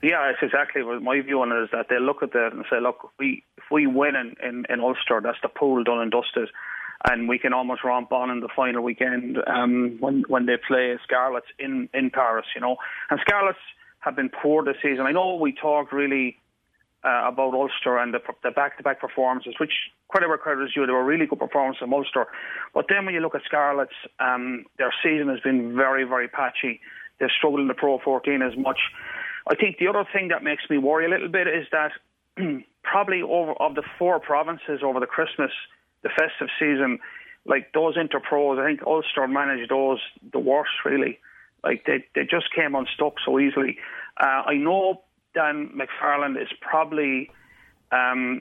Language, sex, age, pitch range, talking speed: English, male, 30-49, 130-150 Hz, 200 wpm